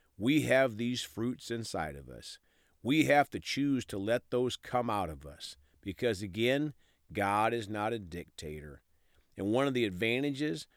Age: 50-69